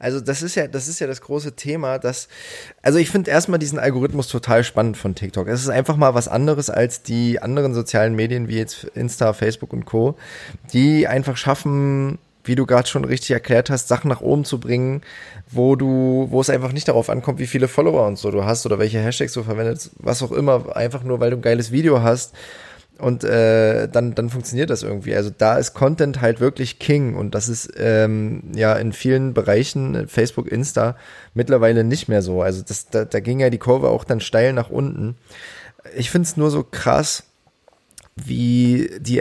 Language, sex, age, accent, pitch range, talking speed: German, male, 20-39, German, 110-135 Hz, 205 wpm